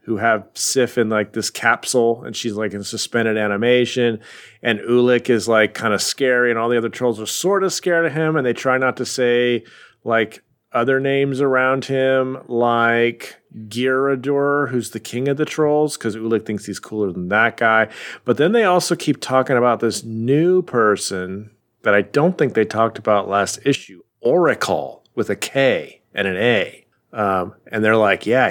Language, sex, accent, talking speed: English, male, American, 185 wpm